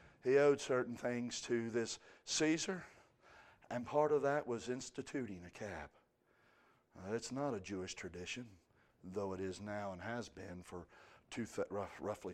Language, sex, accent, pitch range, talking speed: English, male, American, 95-120 Hz, 140 wpm